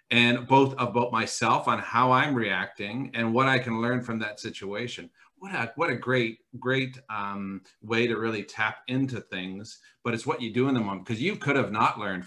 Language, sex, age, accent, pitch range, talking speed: English, male, 50-69, American, 110-130 Hz, 210 wpm